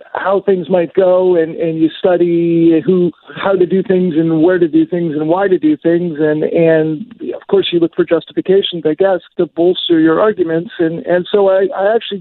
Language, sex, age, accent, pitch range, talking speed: English, male, 50-69, American, 155-185 Hz, 210 wpm